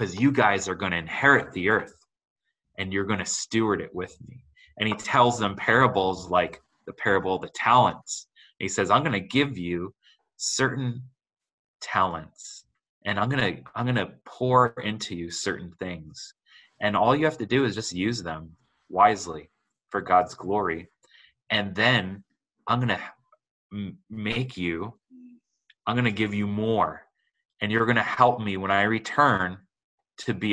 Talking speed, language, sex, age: 170 wpm, English, male, 20-39